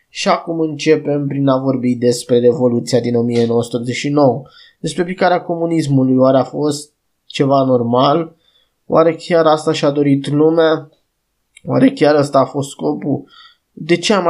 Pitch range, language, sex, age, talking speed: 130-155 Hz, Romanian, male, 20-39, 140 wpm